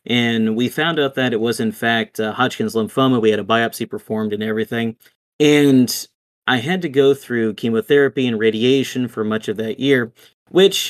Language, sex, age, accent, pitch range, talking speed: English, male, 30-49, American, 110-140 Hz, 185 wpm